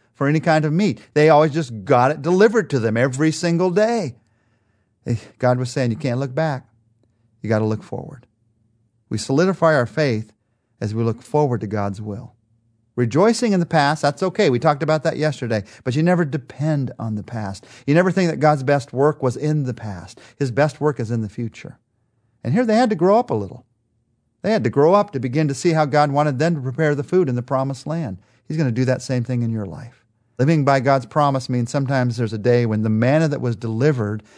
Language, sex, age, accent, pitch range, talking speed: English, male, 40-59, American, 115-150 Hz, 225 wpm